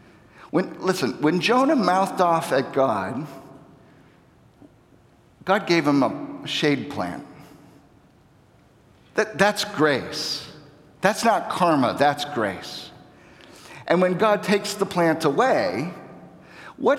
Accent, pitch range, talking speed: American, 150-205 Hz, 100 wpm